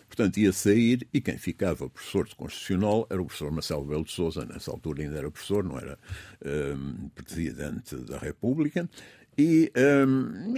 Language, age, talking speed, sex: Portuguese, 60-79, 165 wpm, male